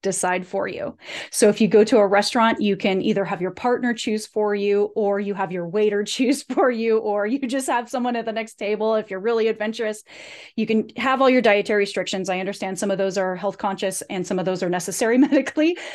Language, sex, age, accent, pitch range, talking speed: English, female, 30-49, American, 190-230 Hz, 235 wpm